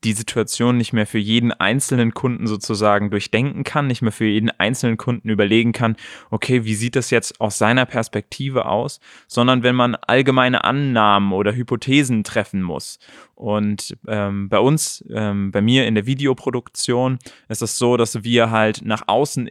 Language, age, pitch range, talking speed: German, 20-39, 110-130 Hz, 170 wpm